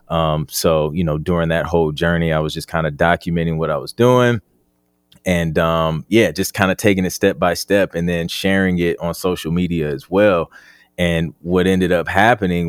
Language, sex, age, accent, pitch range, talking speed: English, male, 20-39, American, 80-95 Hz, 205 wpm